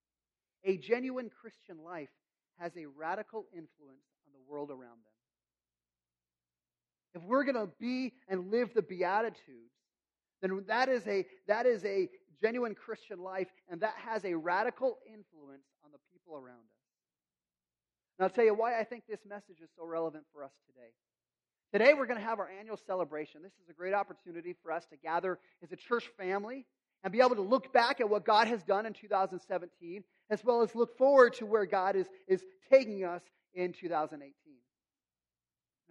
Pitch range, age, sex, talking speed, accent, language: 150-230 Hz, 30-49, male, 175 wpm, American, English